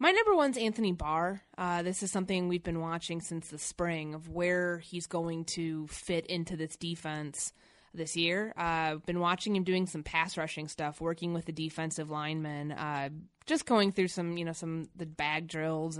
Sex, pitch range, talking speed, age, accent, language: female, 160-190 Hz, 195 wpm, 20-39, American, English